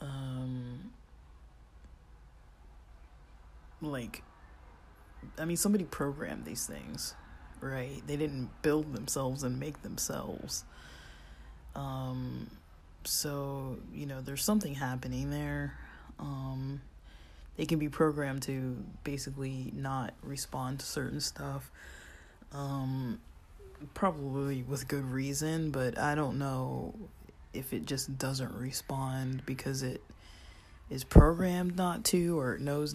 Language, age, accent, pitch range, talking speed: English, 20-39, American, 100-140 Hz, 105 wpm